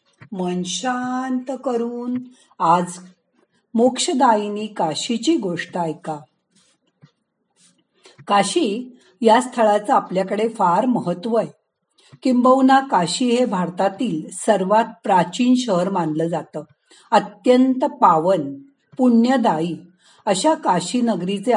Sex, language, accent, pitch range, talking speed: female, Marathi, native, 190-250 Hz, 80 wpm